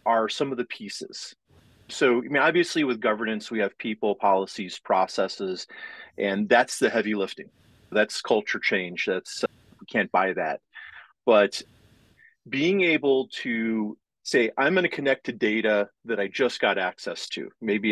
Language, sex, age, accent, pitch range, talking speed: English, male, 30-49, American, 105-145 Hz, 155 wpm